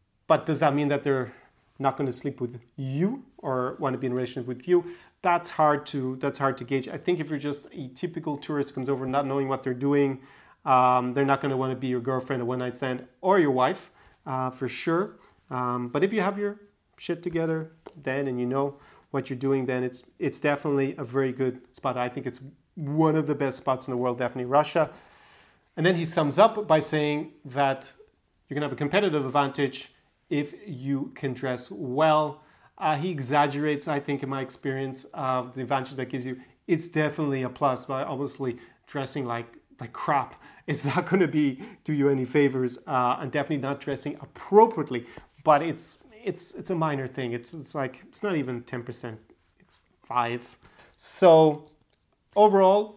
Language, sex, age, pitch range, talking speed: English, male, 30-49, 130-160 Hz, 200 wpm